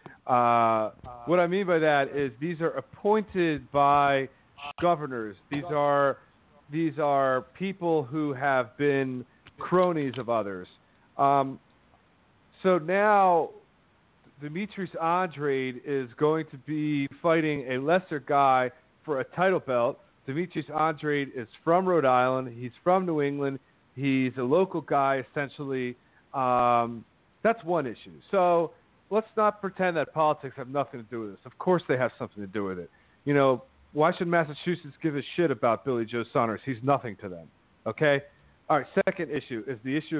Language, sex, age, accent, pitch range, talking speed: English, male, 40-59, American, 130-165 Hz, 155 wpm